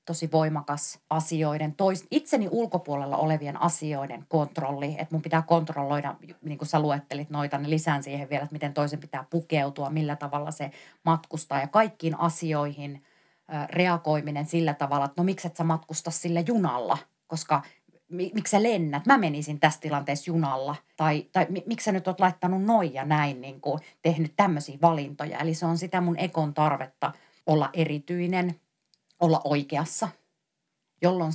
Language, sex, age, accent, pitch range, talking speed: Finnish, female, 30-49, native, 145-170 Hz, 155 wpm